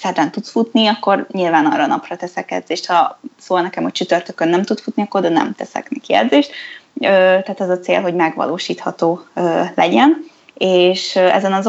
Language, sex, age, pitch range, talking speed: Hungarian, female, 20-39, 175-215 Hz, 170 wpm